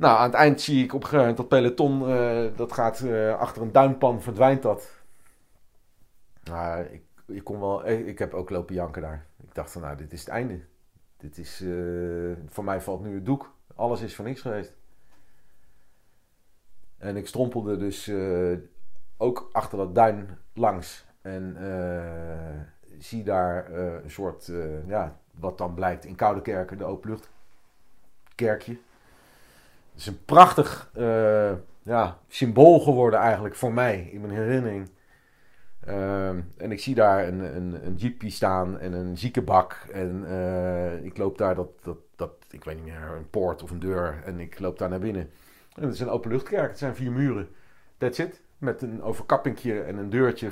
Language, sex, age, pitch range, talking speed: Dutch, male, 40-59, 90-115 Hz, 170 wpm